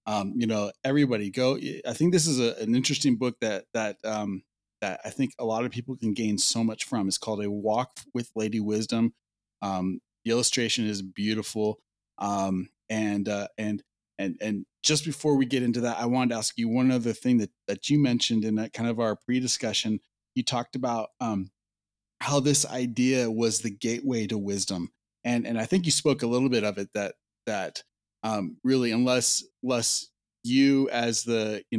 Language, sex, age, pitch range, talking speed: English, male, 30-49, 105-125 Hz, 195 wpm